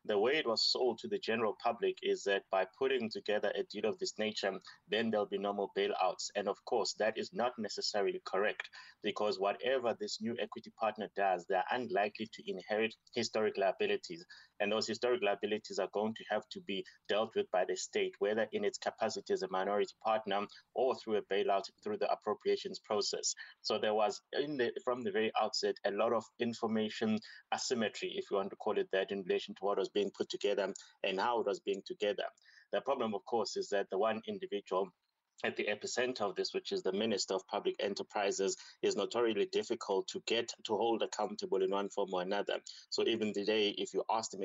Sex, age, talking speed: male, 30-49, 205 wpm